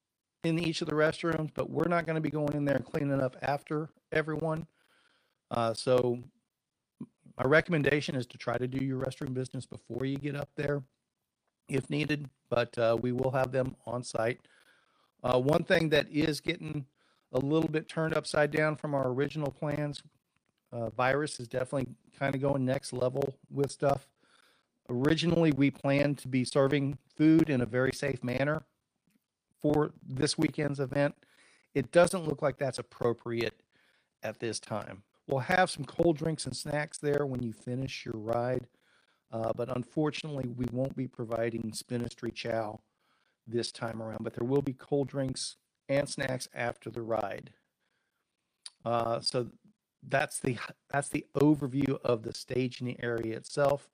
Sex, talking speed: male, 160 wpm